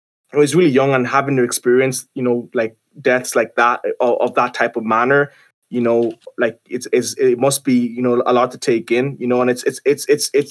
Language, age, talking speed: English, 20-39, 245 wpm